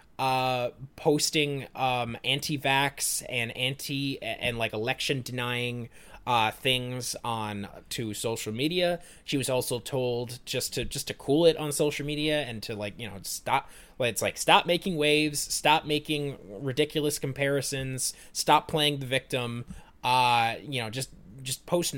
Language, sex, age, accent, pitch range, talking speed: English, male, 20-39, American, 110-140 Hz, 150 wpm